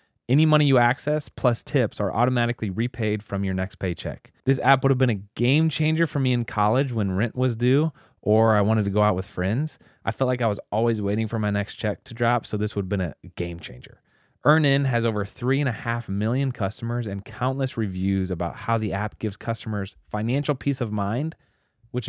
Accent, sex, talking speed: American, male, 210 wpm